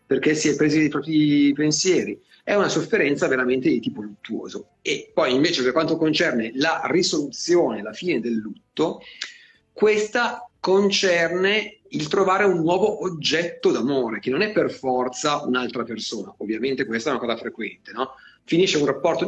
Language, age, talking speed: Italian, 40-59, 160 wpm